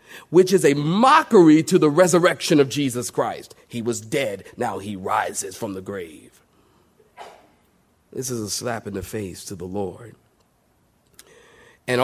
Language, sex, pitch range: English, male, 110-150 Hz